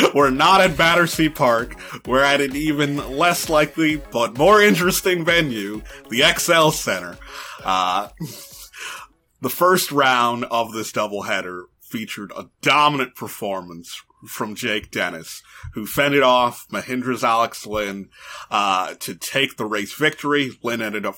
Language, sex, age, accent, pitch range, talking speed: English, male, 30-49, American, 115-150 Hz, 135 wpm